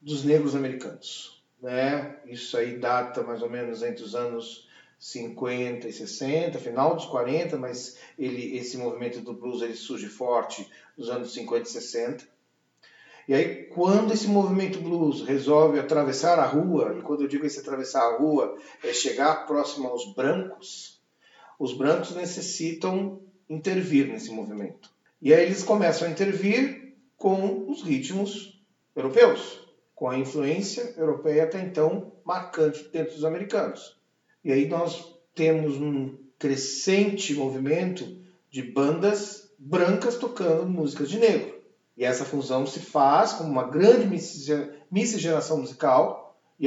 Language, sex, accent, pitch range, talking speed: Portuguese, male, Brazilian, 135-185 Hz, 140 wpm